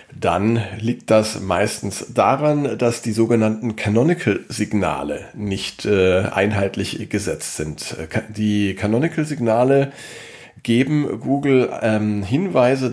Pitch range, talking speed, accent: 105-125 Hz, 95 wpm, German